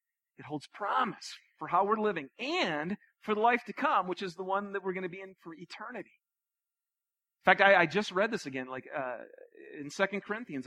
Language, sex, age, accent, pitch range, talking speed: English, male, 40-59, American, 150-210 Hz, 215 wpm